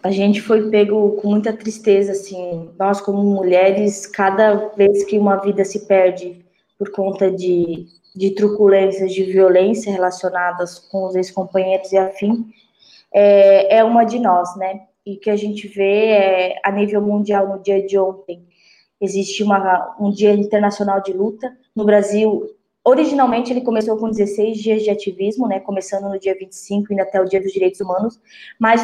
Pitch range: 195-215 Hz